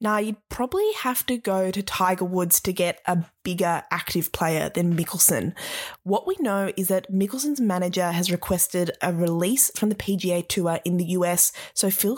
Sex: female